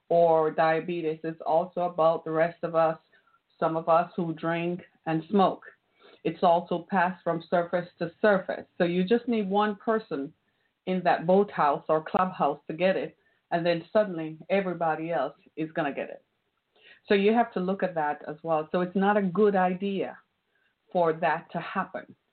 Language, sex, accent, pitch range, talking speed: English, female, American, 165-210 Hz, 175 wpm